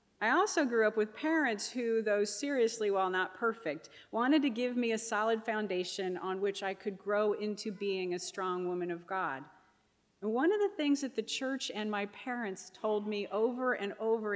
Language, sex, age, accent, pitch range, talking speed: English, female, 40-59, American, 190-230 Hz, 195 wpm